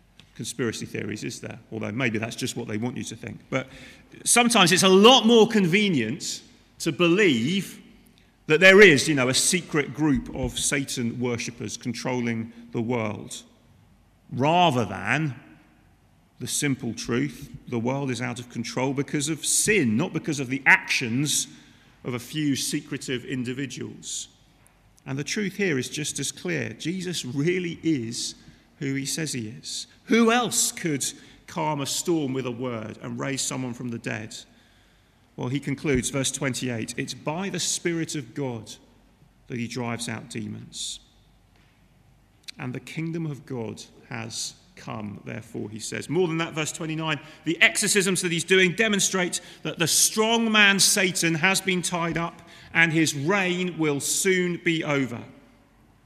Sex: male